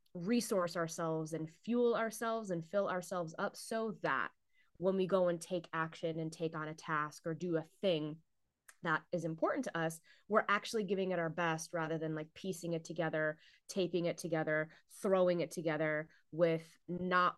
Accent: American